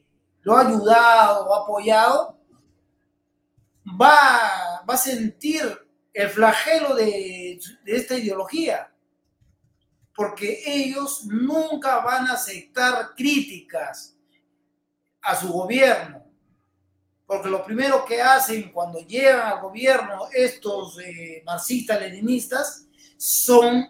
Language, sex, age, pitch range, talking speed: Spanish, male, 40-59, 190-260 Hz, 100 wpm